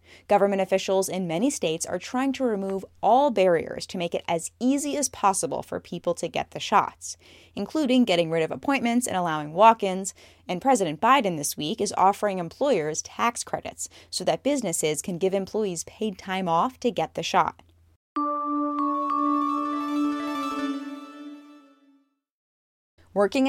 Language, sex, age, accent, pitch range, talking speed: English, female, 10-29, American, 165-225 Hz, 145 wpm